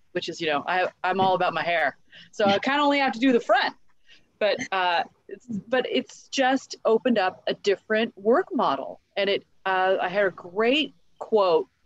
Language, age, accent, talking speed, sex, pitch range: English, 30-49, American, 200 wpm, female, 175-250 Hz